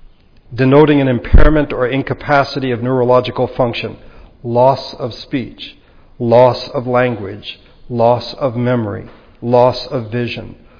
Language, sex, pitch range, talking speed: English, male, 115-145 Hz, 110 wpm